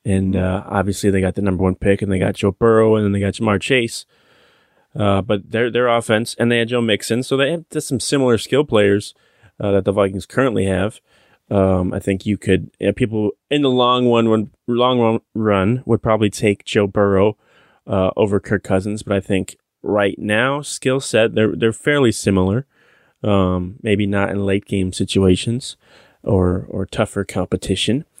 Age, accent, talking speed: 20-39, American, 195 wpm